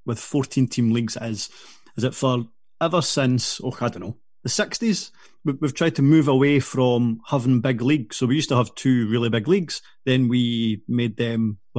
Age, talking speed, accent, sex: 30-49, 200 wpm, British, male